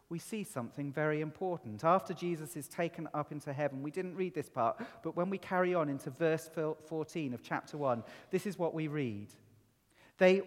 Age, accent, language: 40-59, British, English